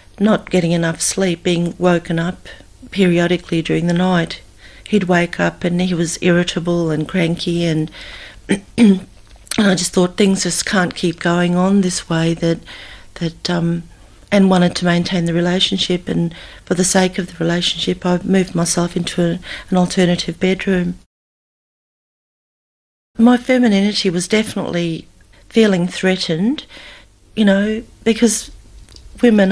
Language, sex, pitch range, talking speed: English, female, 170-195 Hz, 135 wpm